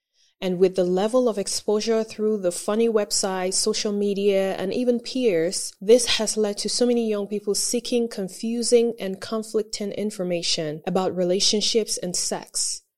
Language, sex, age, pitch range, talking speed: English, female, 20-39, 180-215 Hz, 150 wpm